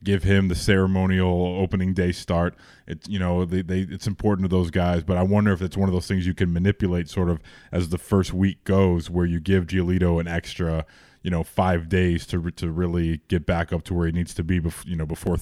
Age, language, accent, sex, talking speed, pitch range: 20-39, English, American, male, 240 wpm, 85-100 Hz